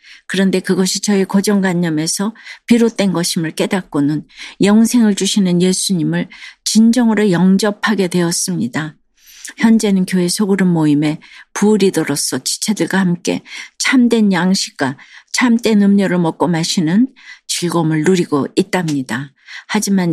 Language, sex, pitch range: Korean, female, 170-215 Hz